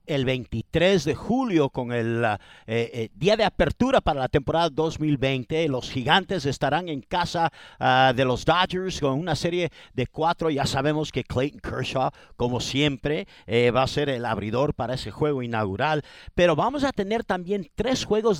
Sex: male